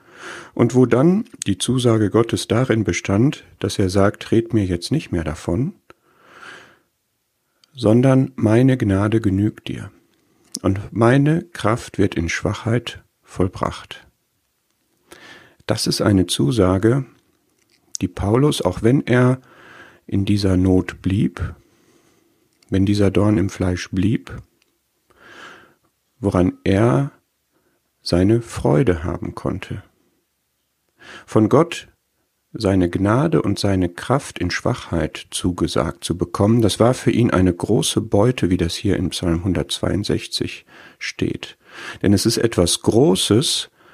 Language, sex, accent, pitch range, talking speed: German, male, German, 95-120 Hz, 115 wpm